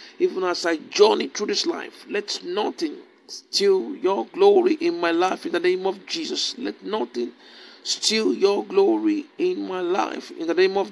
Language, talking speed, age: English, 175 wpm, 50-69